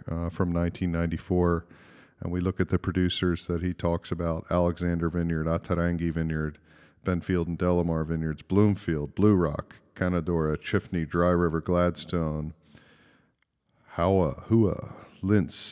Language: English